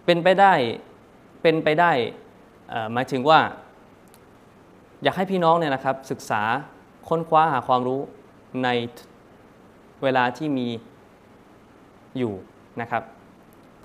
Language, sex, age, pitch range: Thai, male, 20-39, 130-170 Hz